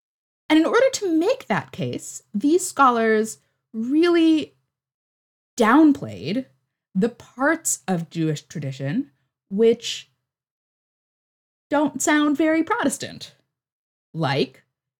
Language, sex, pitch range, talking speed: English, female, 170-265 Hz, 90 wpm